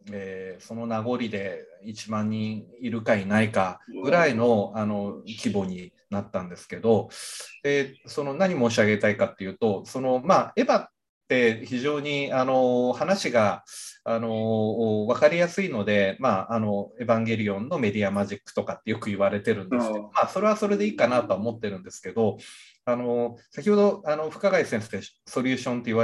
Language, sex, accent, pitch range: Japanese, male, native, 110-170 Hz